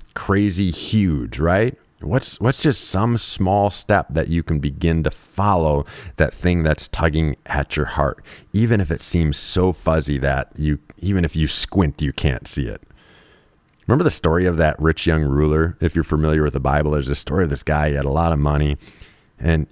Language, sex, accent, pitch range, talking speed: English, male, American, 75-95 Hz, 200 wpm